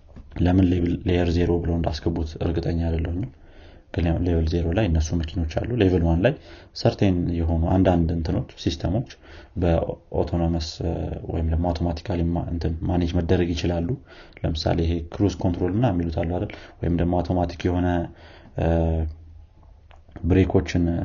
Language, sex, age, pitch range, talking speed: Amharic, male, 30-49, 85-95 Hz, 90 wpm